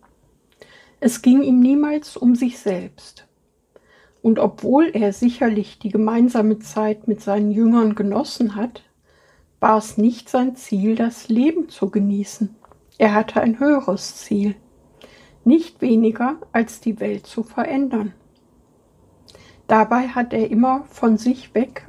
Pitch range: 210-250 Hz